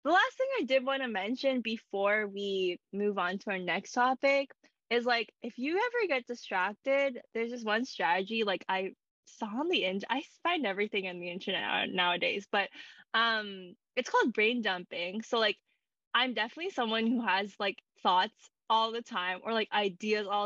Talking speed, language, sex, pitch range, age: 180 wpm, English, female, 200-250 Hz, 10-29